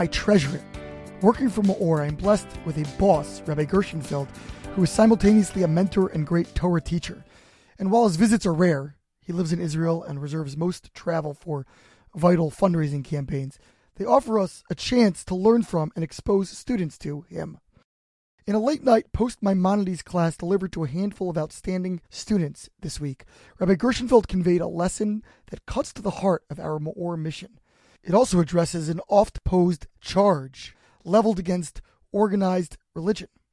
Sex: male